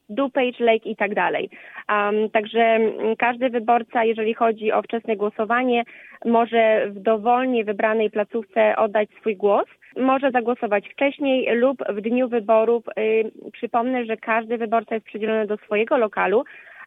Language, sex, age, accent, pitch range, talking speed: Polish, female, 20-39, native, 220-245 Hz, 140 wpm